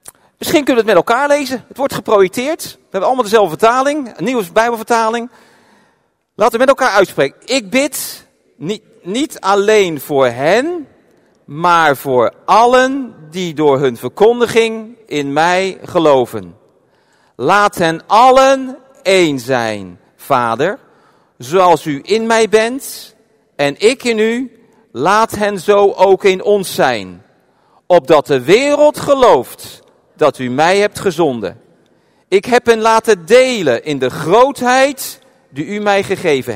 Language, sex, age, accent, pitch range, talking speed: Dutch, male, 40-59, Dutch, 155-230 Hz, 135 wpm